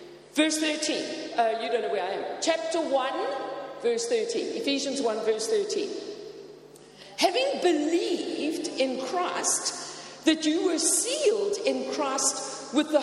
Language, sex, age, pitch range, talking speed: English, female, 50-69, 265-385 Hz, 135 wpm